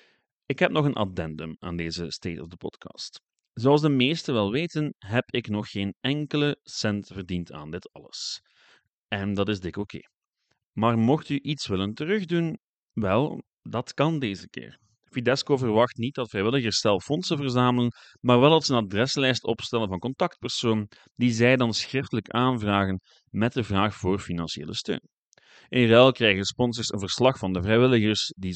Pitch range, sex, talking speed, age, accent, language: 100-130 Hz, male, 170 wpm, 30-49, Dutch, Dutch